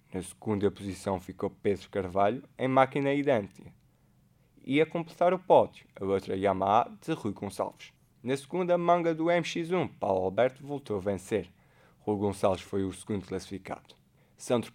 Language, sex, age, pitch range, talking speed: Portuguese, male, 20-39, 100-150 Hz, 150 wpm